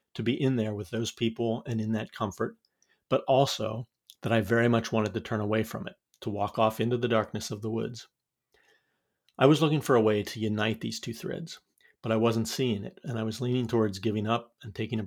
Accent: American